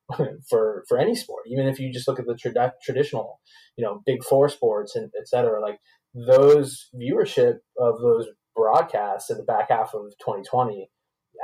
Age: 20-39